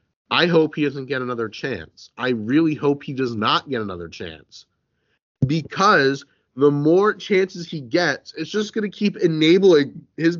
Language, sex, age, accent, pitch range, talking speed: English, male, 30-49, American, 115-160 Hz, 165 wpm